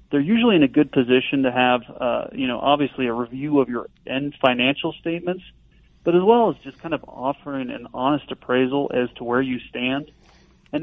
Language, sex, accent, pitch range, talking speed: English, male, American, 130-160 Hz, 200 wpm